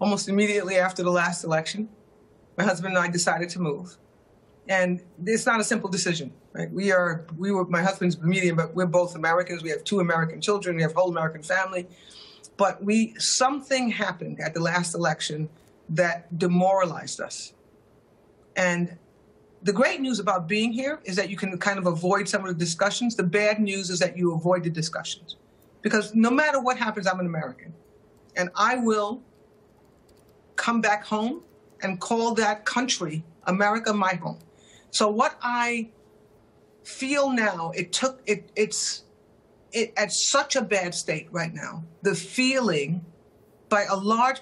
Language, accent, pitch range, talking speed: English, American, 180-225 Hz, 165 wpm